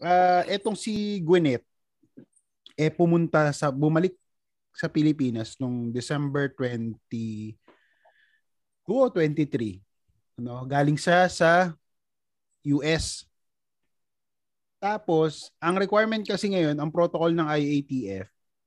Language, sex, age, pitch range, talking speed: Filipino, male, 20-39, 130-175 Hz, 90 wpm